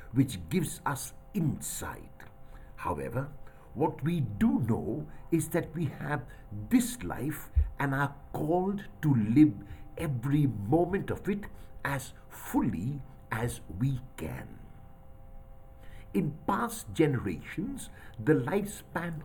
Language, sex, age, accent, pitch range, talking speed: English, male, 60-79, Indian, 125-170 Hz, 105 wpm